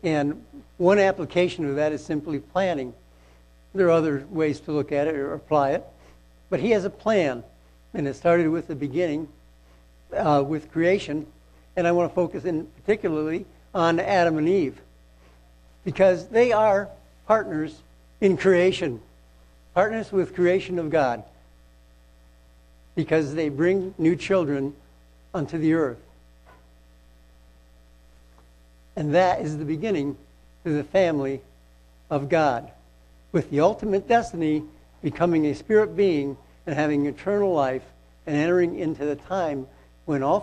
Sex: male